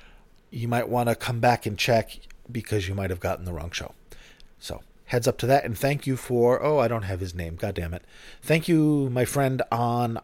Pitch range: 95-125 Hz